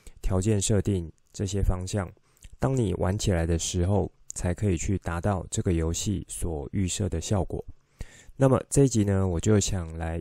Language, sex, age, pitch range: Chinese, male, 20-39, 90-110 Hz